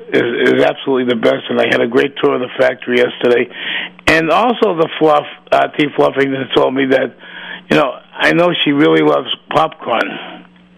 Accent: American